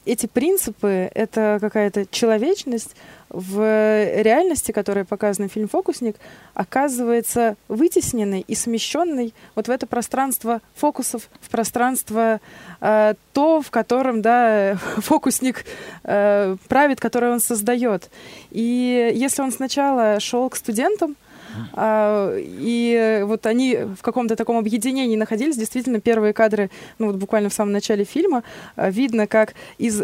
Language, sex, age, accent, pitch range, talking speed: Russian, female, 20-39, native, 215-250 Hz, 120 wpm